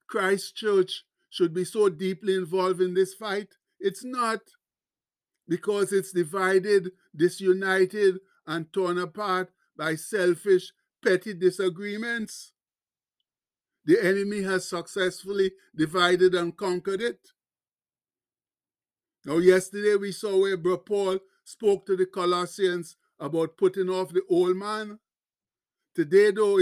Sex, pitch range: male, 180-210 Hz